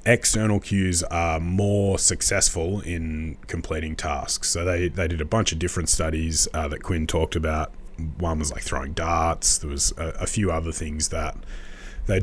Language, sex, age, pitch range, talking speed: English, male, 30-49, 85-100 Hz, 175 wpm